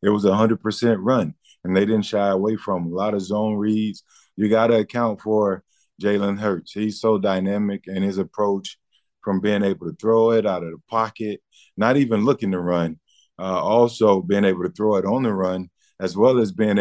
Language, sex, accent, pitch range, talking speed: English, male, American, 95-110 Hz, 205 wpm